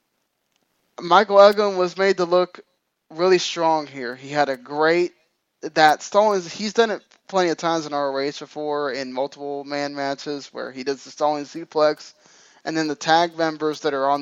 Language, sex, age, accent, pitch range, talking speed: English, male, 10-29, American, 140-170 Hz, 180 wpm